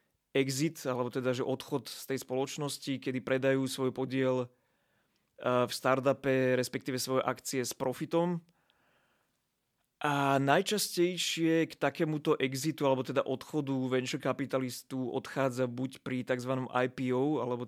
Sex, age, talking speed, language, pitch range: male, 20-39, 120 wpm, Slovak, 125-135 Hz